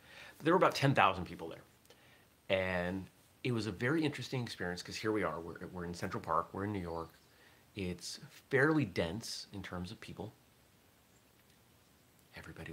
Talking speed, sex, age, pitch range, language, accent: 160 wpm, male, 30-49, 85-115 Hz, English, American